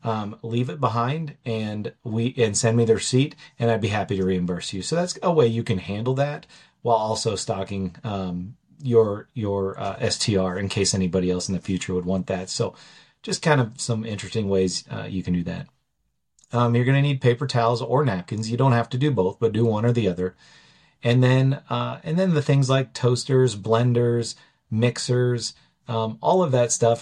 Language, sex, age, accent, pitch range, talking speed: English, male, 30-49, American, 100-125 Hz, 205 wpm